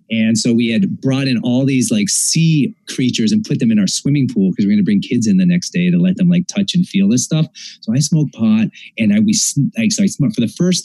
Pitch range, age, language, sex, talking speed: 135-210 Hz, 30-49, English, male, 280 wpm